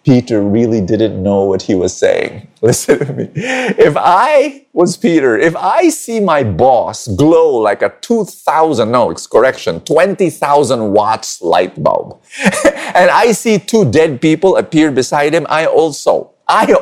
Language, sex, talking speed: English, male, 155 wpm